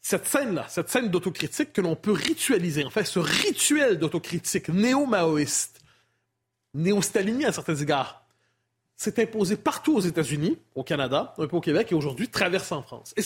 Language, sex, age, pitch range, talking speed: French, male, 30-49, 160-225 Hz, 170 wpm